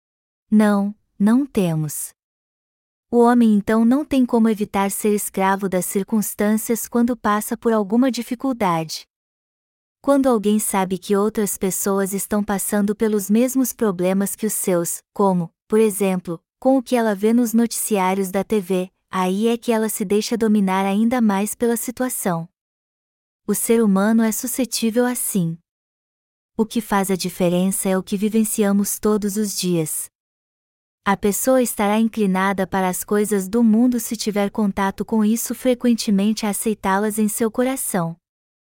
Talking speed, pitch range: 145 wpm, 195-230 Hz